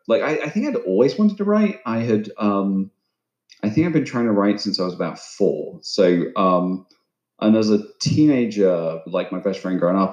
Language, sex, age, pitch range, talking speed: English, male, 30-49, 95-125 Hz, 215 wpm